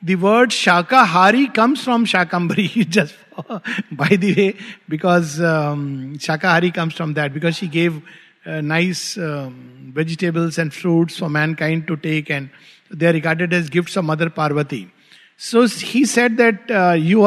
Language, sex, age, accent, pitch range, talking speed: English, male, 50-69, Indian, 175-240 Hz, 155 wpm